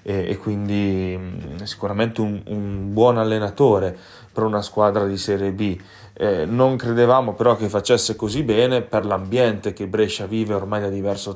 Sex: male